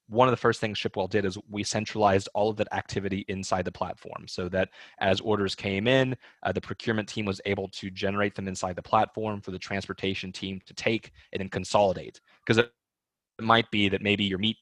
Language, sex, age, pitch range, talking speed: English, male, 20-39, 95-110 Hz, 215 wpm